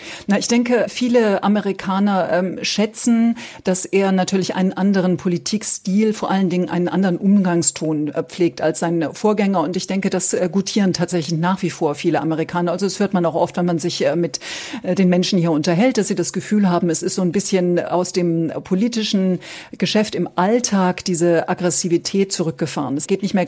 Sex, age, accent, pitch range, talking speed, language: female, 50-69, German, 170-200 Hz, 195 wpm, German